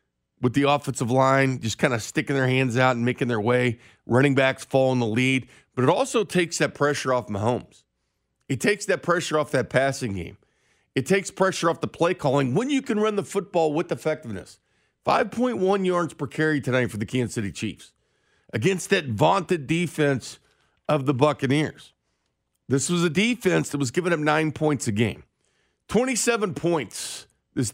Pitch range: 125-175 Hz